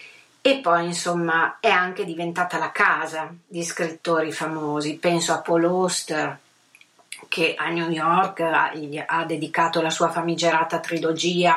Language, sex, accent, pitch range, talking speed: Italian, female, native, 165-190 Hz, 130 wpm